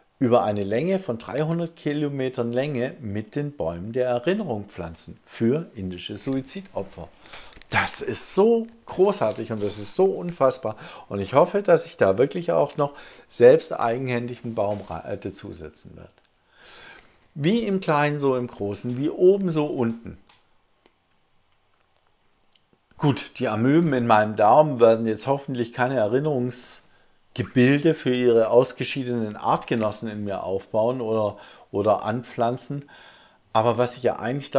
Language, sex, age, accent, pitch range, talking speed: English, male, 50-69, German, 110-155 Hz, 135 wpm